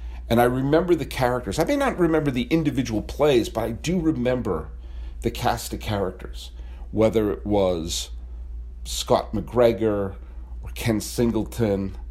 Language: English